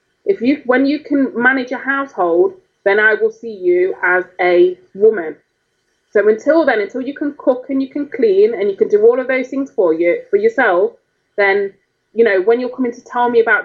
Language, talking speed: English, 215 wpm